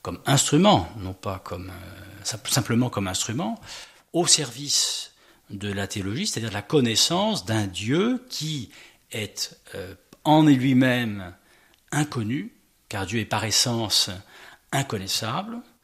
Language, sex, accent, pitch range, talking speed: French, male, French, 110-180 Hz, 110 wpm